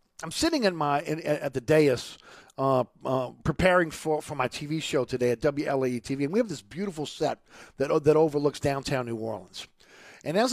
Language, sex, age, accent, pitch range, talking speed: English, male, 50-69, American, 140-180 Hz, 195 wpm